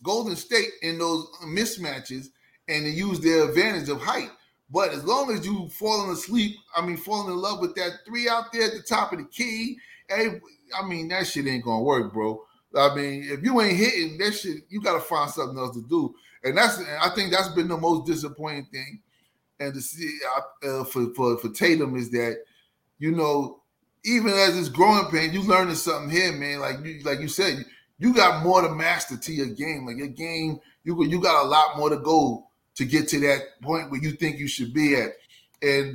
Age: 30-49